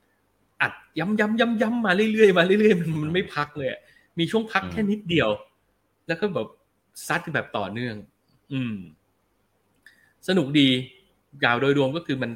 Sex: male